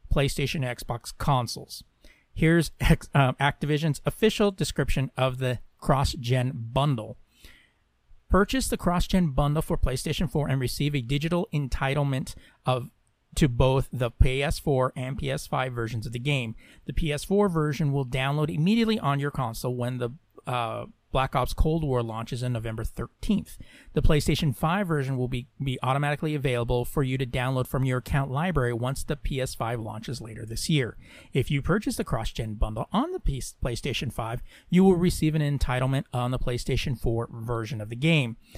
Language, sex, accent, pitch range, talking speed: English, male, American, 125-155 Hz, 160 wpm